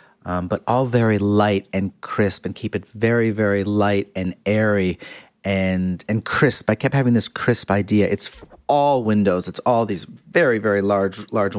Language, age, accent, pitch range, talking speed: English, 40-59, American, 95-110 Hz, 175 wpm